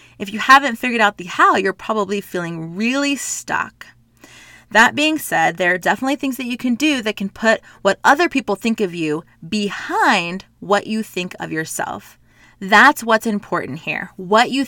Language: English